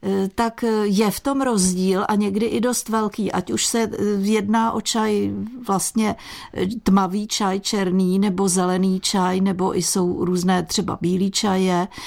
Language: Czech